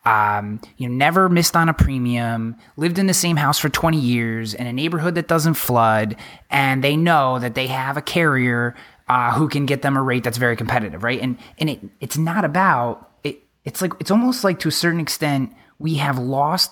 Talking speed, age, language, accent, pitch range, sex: 215 wpm, 20-39, English, American, 125-170 Hz, male